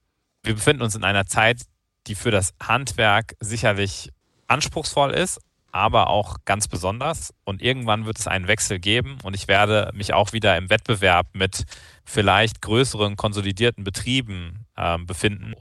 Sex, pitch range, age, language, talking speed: male, 95-115 Hz, 30-49, German, 150 wpm